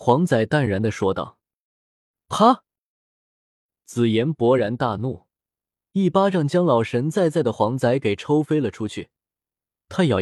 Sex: male